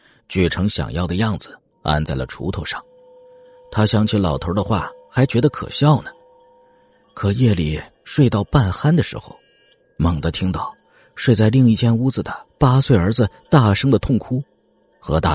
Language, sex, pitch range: Chinese, male, 100-155 Hz